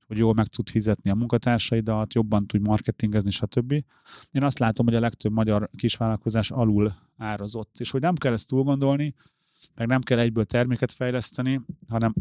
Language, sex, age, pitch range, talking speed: Hungarian, male, 30-49, 115-130 Hz, 165 wpm